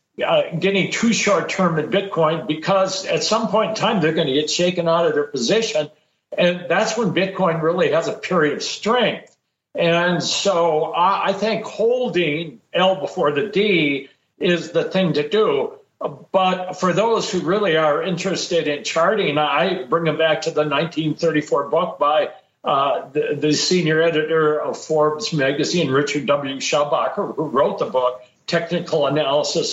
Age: 60-79